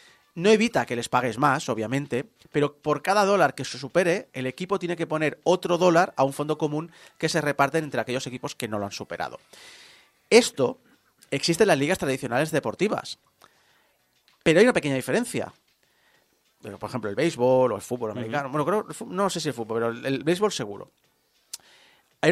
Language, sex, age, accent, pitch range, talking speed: Spanish, male, 30-49, Spanish, 130-180 Hz, 185 wpm